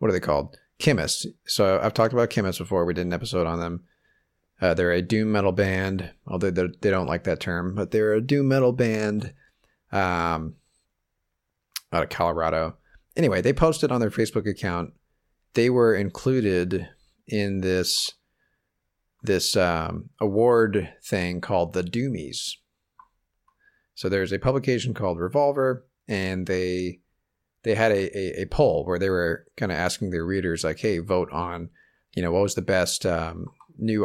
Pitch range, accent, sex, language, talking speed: 85-105 Hz, American, male, English, 165 wpm